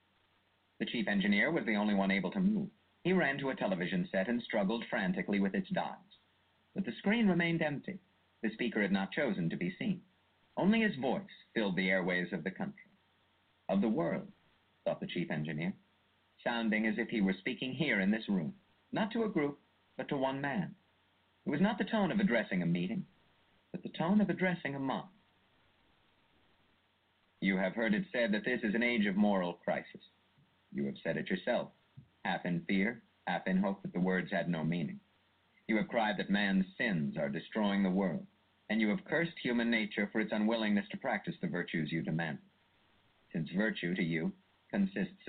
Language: English